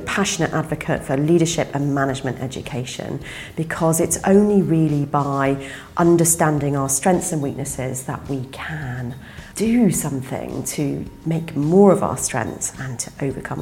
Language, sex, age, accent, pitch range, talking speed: English, female, 40-59, British, 135-170 Hz, 135 wpm